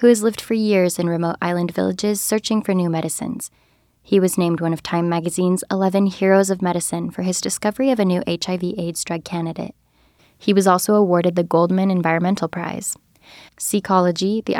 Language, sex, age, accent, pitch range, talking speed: English, female, 10-29, American, 170-205 Hz, 175 wpm